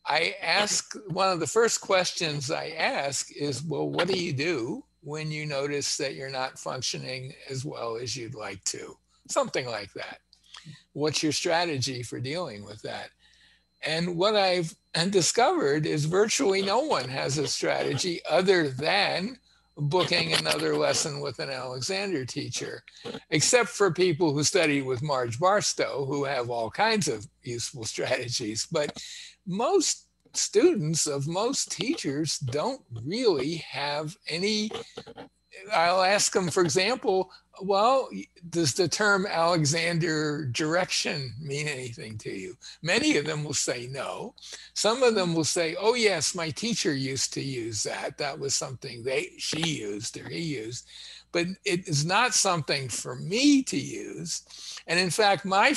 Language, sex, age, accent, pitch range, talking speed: English, male, 60-79, American, 140-190 Hz, 150 wpm